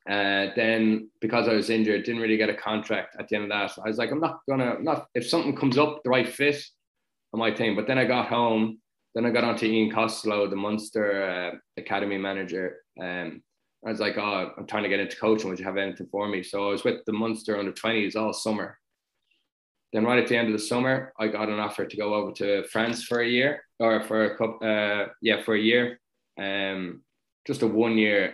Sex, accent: male, Irish